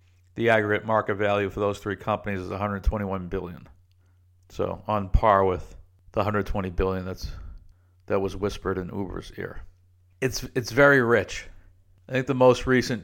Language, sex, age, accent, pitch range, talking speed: English, male, 50-69, American, 95-110 Hz, 155 wpm